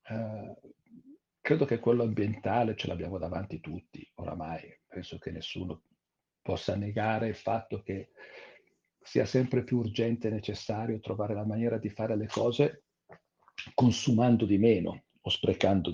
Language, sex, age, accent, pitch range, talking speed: Italian, male, 50-69, native, 95-115 Hz, 130 wpm